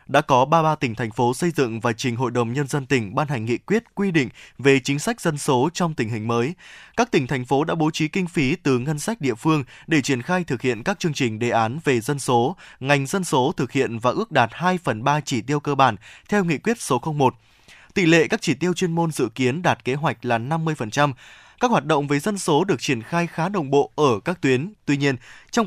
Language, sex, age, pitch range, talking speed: Vietnamese, male, 20-39, 130-180 Hz, 255 wpm